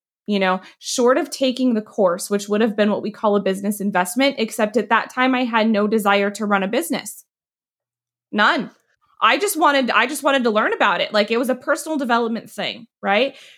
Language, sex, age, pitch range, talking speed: English, female, 20-39, 190-245 Hz, 210 wpm